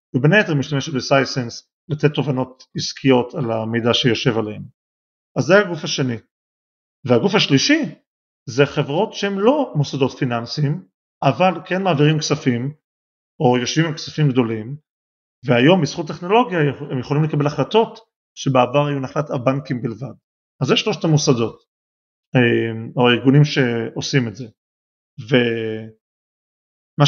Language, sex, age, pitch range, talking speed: Hebrew, male, 40-59, 125-155 Hz, 120 wpm